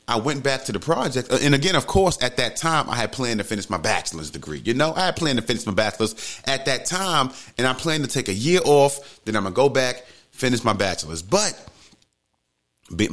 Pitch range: 110-145 Hz